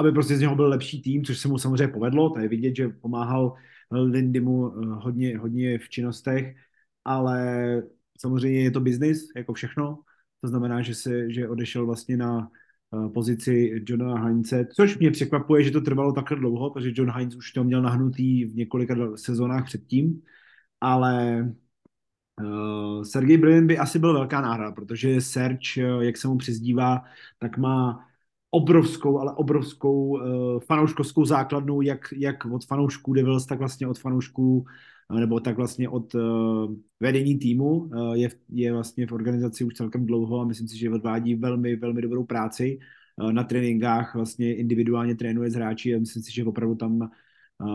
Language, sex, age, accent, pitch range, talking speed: Czech, male, 30-49, native, 115-130 Hz, 165 wpm